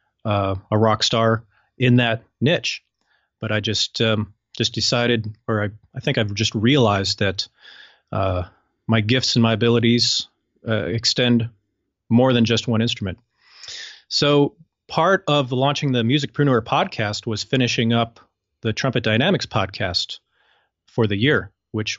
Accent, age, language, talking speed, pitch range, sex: American, 30-49, English, 140 wpm, 105-125 Hz, male